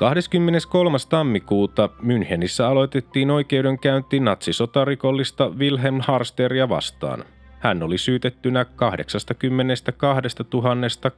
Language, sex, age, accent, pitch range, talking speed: Finnish, male, 30-49, native, 110-135 Hz, 75 wpm